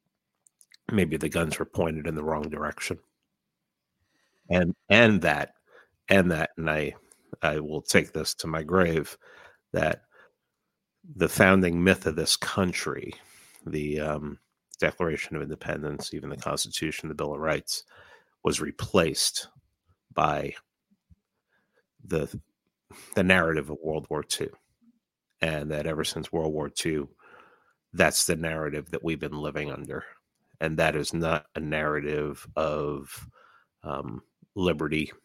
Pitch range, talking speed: 75-85 Hz, 130 wpm